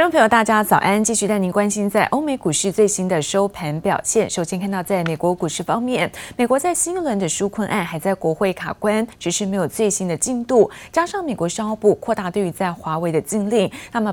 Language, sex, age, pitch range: Chinese, female, 20-39, 180-230 Hz